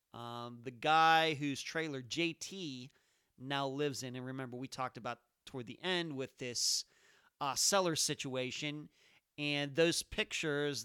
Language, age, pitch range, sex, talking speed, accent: English, 40-59, 130-155 Hz, male, 140 wpm, American